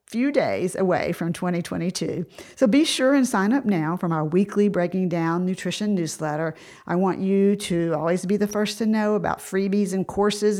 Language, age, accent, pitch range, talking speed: English, 50-69, American, 170-210 Hz, 185 wpm